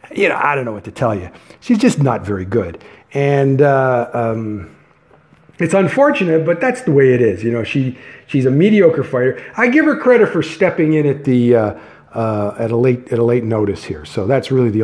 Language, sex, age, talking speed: English, male, 50-69, 225 wpm